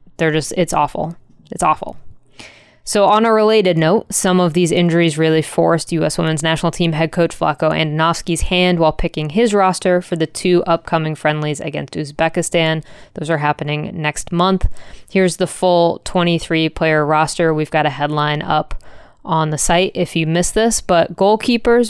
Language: English